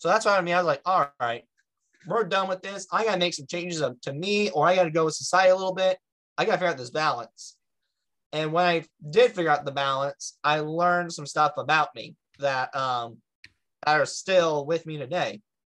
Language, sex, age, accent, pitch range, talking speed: English, male, 30-49, American, 140-180 Hz, 240 wpm